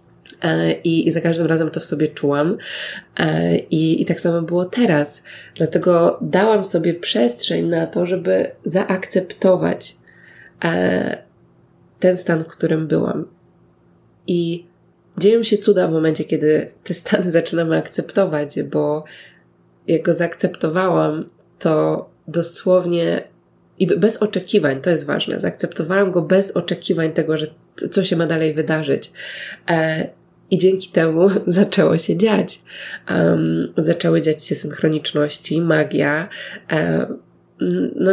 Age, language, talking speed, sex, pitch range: 20-39, Polish, 115 wpm, female, 160-185 Hz